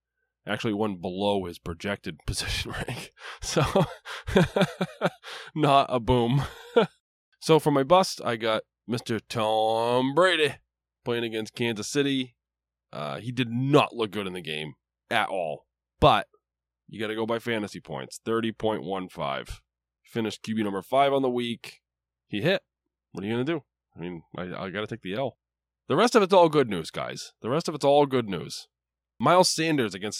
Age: 20-39